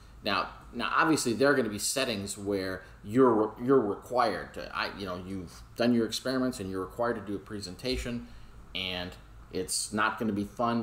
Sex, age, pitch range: male, 30-49, 95-120 Hz